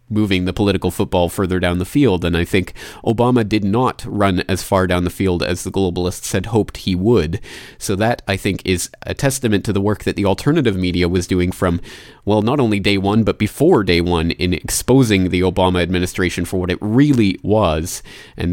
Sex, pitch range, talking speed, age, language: male, 90-120 Hz, 205 wpm, 30-49, English